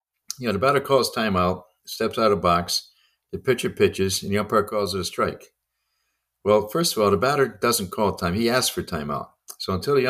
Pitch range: 90-105 Hz